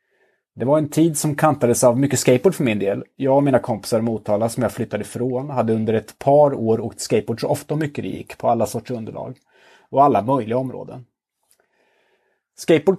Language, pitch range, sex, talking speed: Swedish, 115-145 Hz, male, 195 wpm